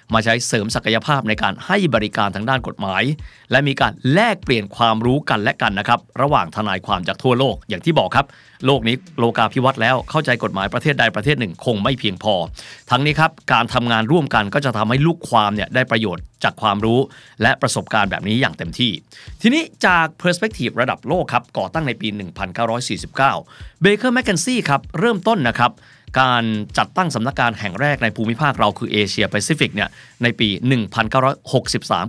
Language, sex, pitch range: Thai, male, 110-145 Hz